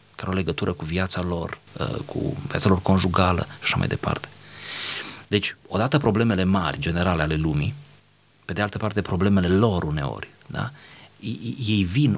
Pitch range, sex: 95-120 Hz, male